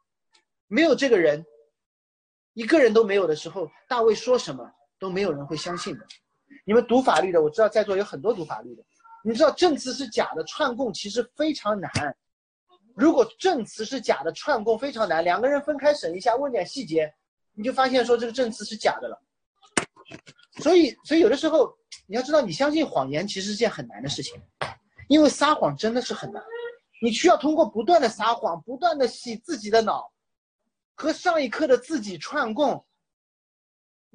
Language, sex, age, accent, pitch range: Chinese, male, 30-49, native, 190-290 Hz